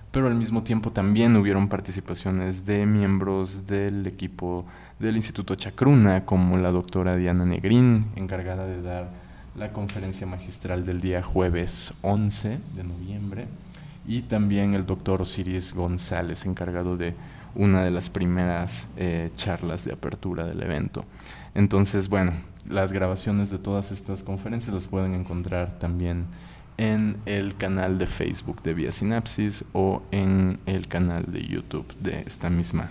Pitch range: 90-105 Hz